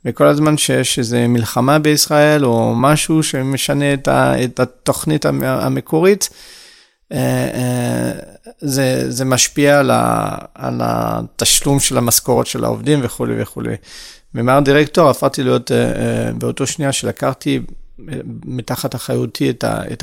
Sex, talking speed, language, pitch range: male, 110 wpm, Hebrew, 115-145 Hz